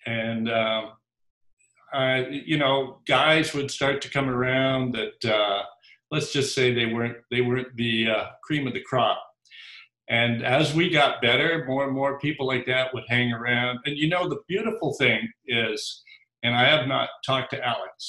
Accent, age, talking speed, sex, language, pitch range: American, 50-69, 180 wpm, male, English, 115-140 Hz